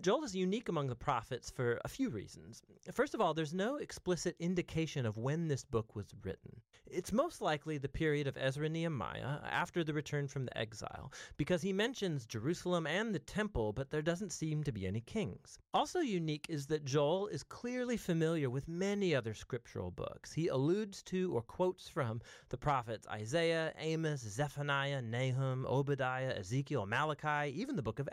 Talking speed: 180 wpm